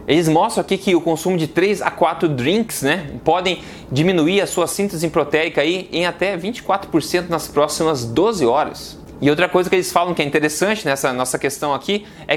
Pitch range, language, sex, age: 150-190 Hz, Portuguese, male, 20-39